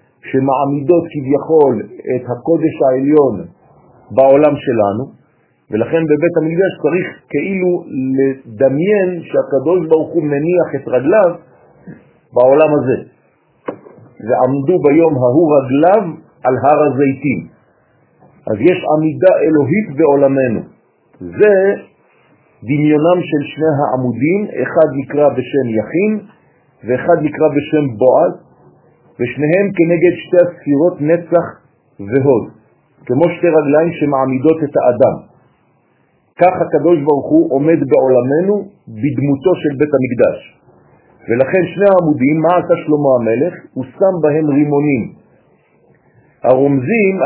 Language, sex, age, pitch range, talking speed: French, male, 50-69, 135-170 Hz, 95 wpm